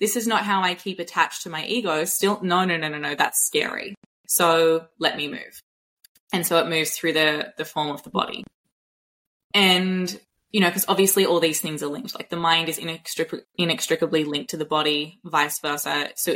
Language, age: English, 20-39